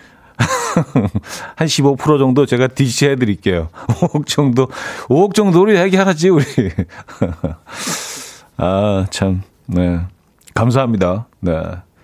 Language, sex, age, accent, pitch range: Korean, male, 40-59, native, 95-145 Hz